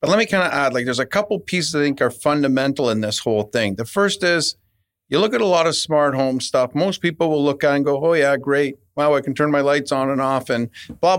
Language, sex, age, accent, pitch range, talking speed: English, male, 40-59, American, 130-170 Hz, 285 wpm